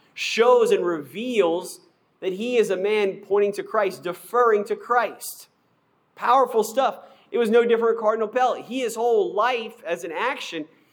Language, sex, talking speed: English, male, 165 wpm